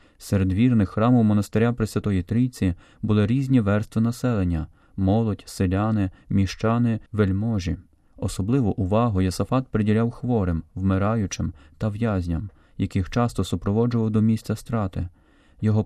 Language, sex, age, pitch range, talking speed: Ukrainian, male, 30-49, 95-120 Hz, 115 wpm